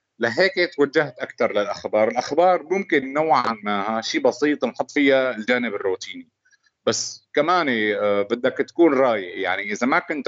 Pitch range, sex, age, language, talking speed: 110-155 Hz, male, 30-49, English, 135 wpm